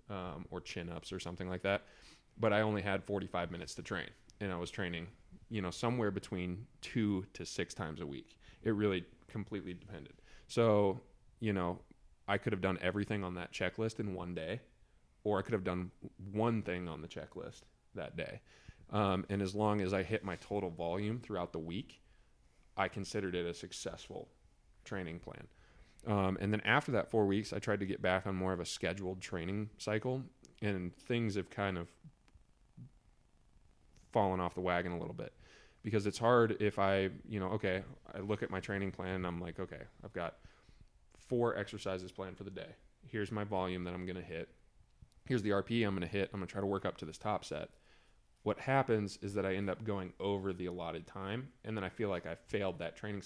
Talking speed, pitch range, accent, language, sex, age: 205 wpm, 90-105 Hz, American, English, male, 20-39